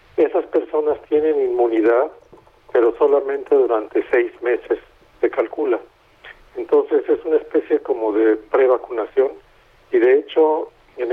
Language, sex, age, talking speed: Spanish, male, 50-69, 120 wpm